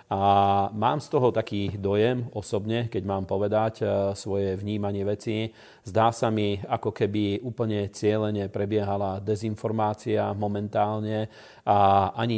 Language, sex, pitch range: Slovak, male, 100-110 Hz